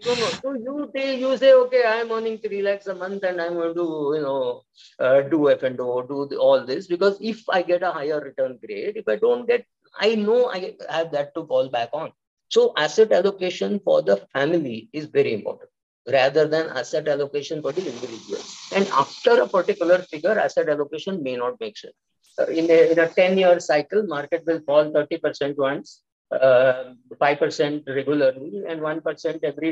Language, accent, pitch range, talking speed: English, Indian, 145-210 Hz, 200 wpm